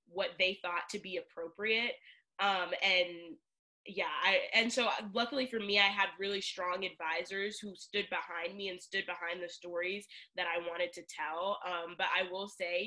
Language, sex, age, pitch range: English, female, 10-29, 175-210 Hz